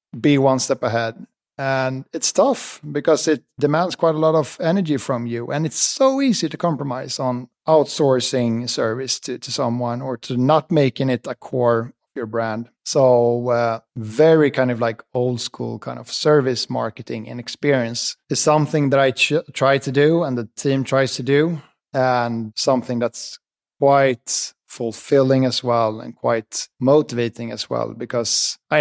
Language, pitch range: English, 115-135 Hz